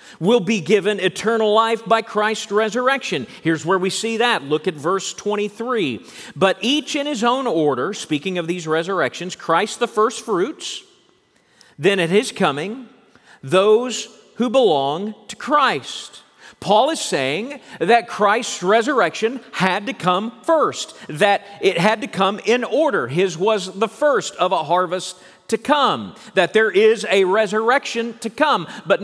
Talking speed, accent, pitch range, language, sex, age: 155 wpm, American, 180-235 Hz, English, male, 40-59